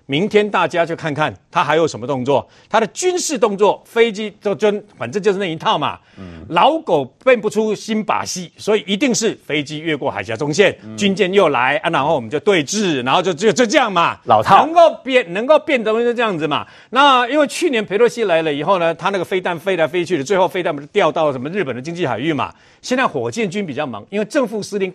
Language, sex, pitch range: Chinese, male, 165-235 Hz